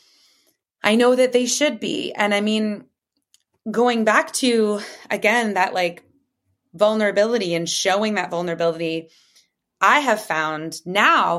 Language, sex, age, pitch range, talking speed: English, female, 20-39, 170-235 Hz, 125 wpm